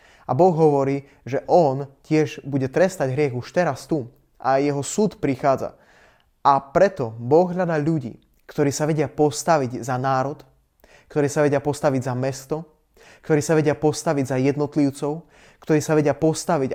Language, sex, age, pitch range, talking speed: Slovak, male, 20-39, 130-155 Hz, 155 wpm